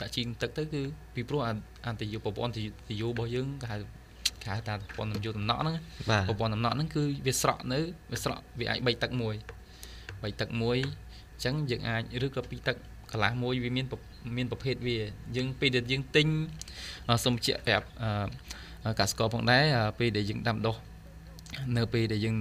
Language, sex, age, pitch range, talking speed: English, male, 20-39, 105-130 Hz, 120 wpm